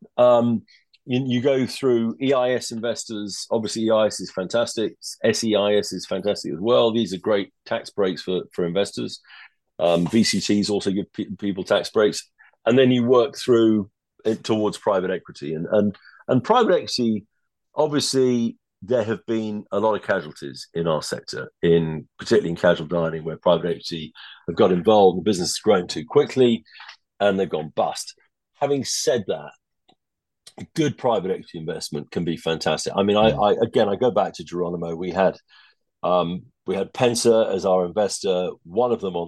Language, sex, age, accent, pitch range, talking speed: English, male, 40-59, British, 90-115 Hz, 170 wpm